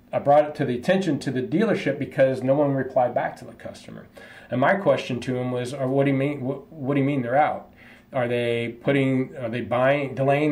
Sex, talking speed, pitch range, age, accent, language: male, 235 wpm, 130-155 Hz, 40-59, American, English